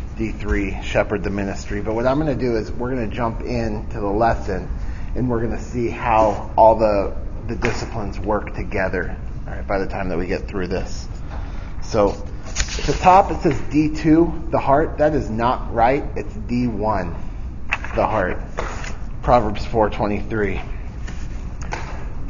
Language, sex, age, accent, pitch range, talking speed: English, male, 30-49, American, 95-120 Hz, 160 wpm